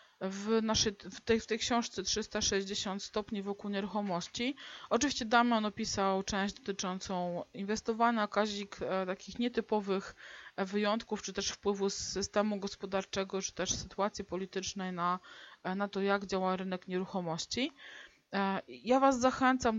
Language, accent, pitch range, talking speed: English, Polish, 195-225 Hz, 125 wpm